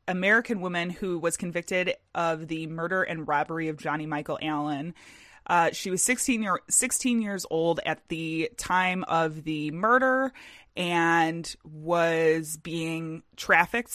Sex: female